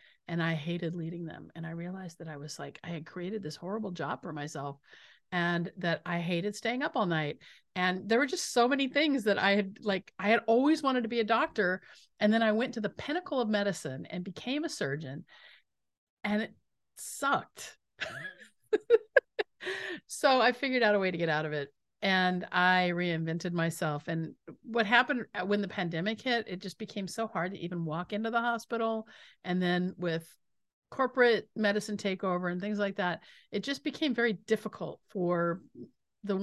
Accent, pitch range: American, 170-225 Hz